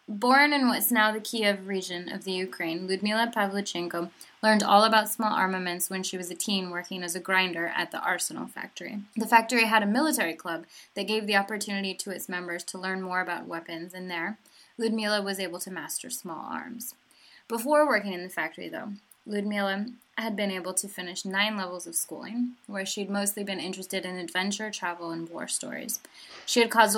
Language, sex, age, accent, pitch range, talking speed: English, female, 20-39, American, 180-220 Hz, 195 wpm